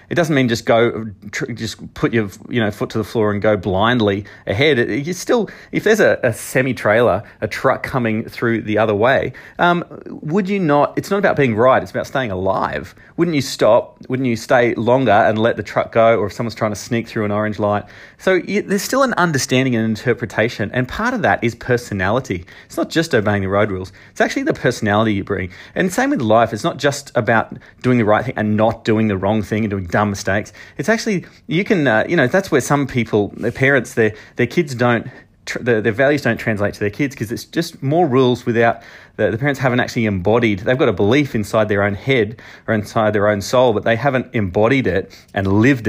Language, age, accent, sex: English, 30-49, Australian, male